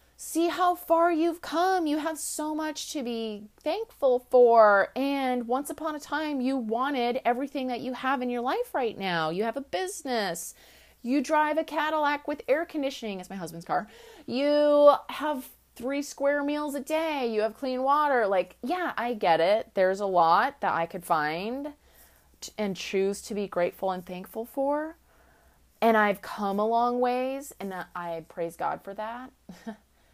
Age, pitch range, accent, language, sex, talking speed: 30-49, 185-270 Hz, American, English, female, 175 wpm